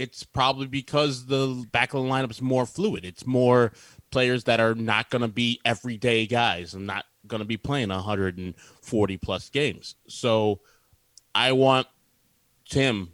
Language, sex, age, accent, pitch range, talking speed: English, male, 30-49, American, 110-135 Hz, 155 wpm